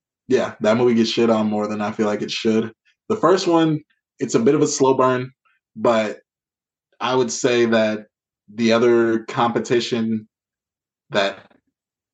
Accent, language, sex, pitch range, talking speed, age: American, English, male, 105-120 Hz, 160 wpm, 20-39